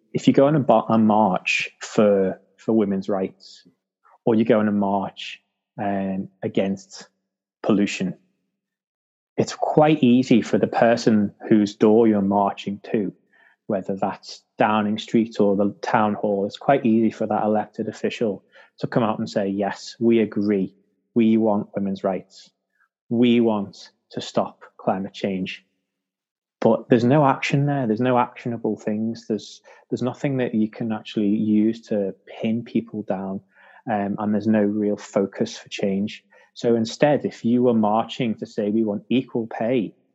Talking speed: 155 wpm